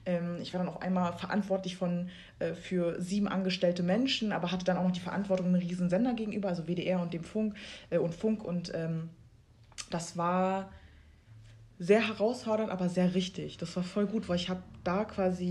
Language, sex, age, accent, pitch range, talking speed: German, female, 20-39, German, 175-205 Hz, 190 wpm